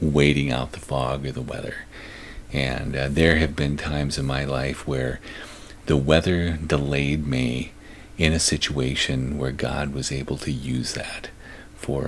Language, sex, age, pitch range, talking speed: English, male, 40-59, 70-80 Hz, 160 wpm